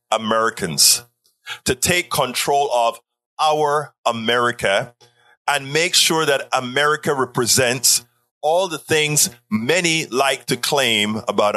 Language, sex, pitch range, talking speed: English, male, 120-155 Hz, 110 wpm